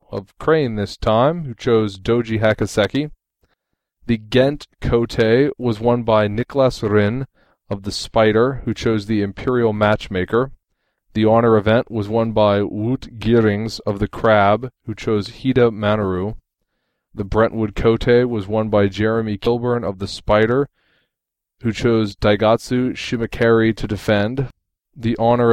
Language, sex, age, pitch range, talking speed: English, male, 20-39, 105-120 Hz, 135 wpm